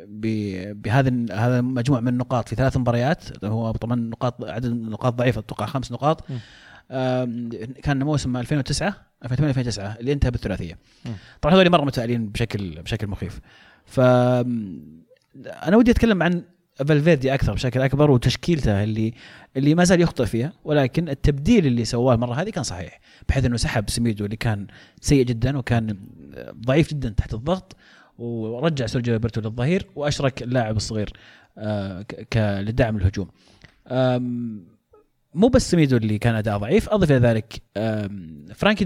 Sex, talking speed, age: male, 135 wpm, 30-49